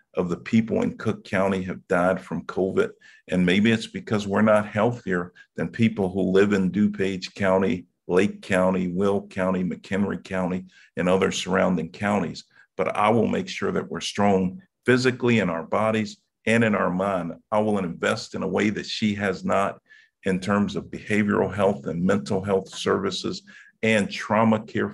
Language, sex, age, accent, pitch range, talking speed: English, male, 50-69, American, 95-115 Hz, 175 wpm